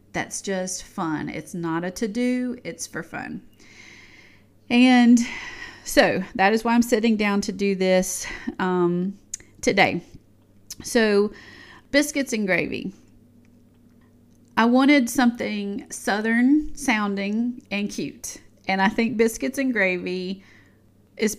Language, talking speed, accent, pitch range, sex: English, 115 wpm, American, 180-230 Hz, female